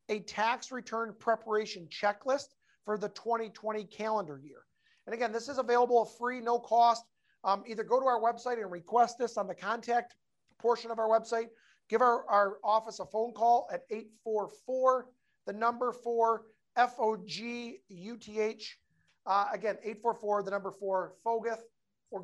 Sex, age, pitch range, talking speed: male, 40-59, 200-235 Hz, 145 wpm